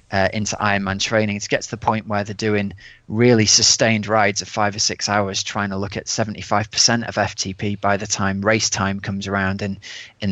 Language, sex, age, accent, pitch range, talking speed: English, male, 30-49, British, 105-120 Hz, 225 wpm